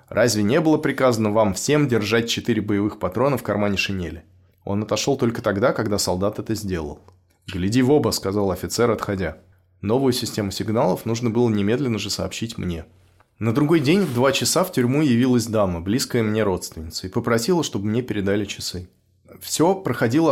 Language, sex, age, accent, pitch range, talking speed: Russian, male, 20-39, native, 95-125 Hz, 170 wpm